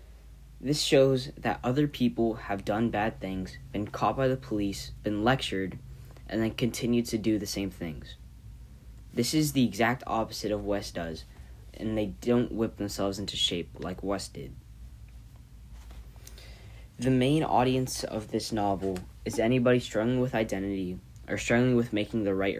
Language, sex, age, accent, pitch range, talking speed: English, male, 10-29, American, 95-120 Hz, 160 wpm